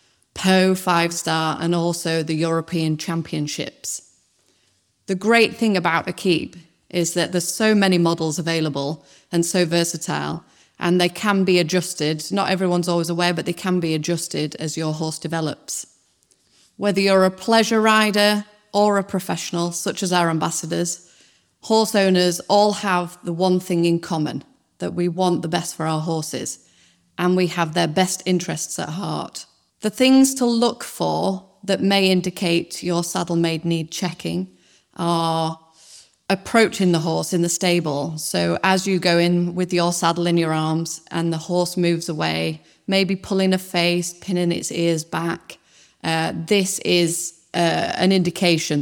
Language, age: English, 30-49